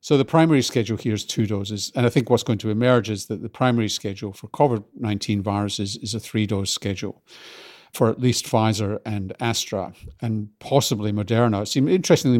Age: 50-69